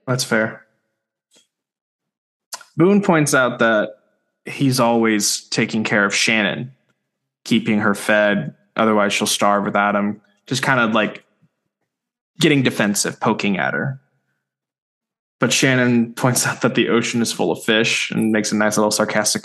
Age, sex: 20-39, male